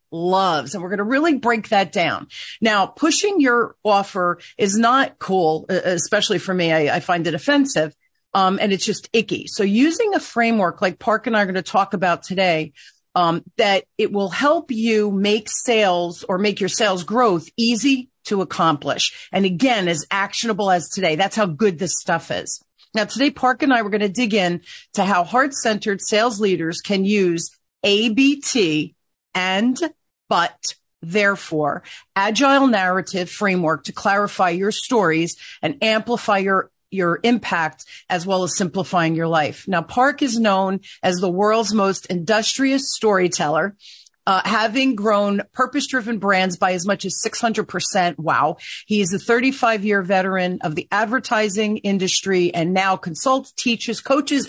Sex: female